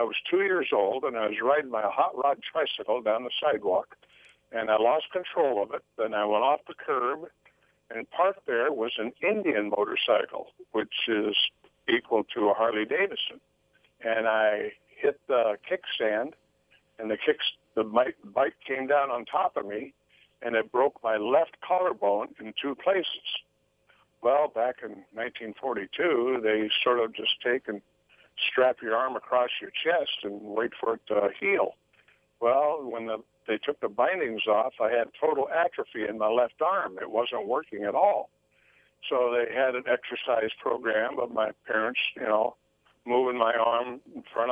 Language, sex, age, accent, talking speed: English, male, 60-79, American, 165 wpm